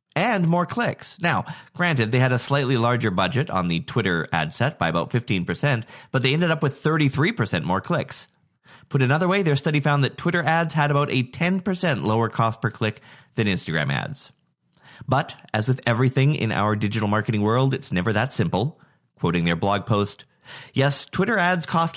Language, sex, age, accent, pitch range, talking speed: English, male, 30-49, American, 115-155 Hz, 185 wpm